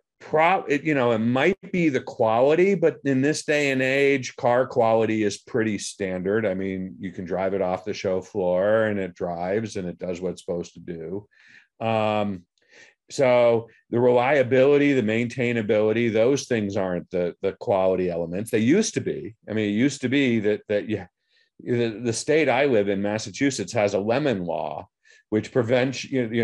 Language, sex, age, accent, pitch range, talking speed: English, male, 50-69, American, 95-130 Hz, 180 wpm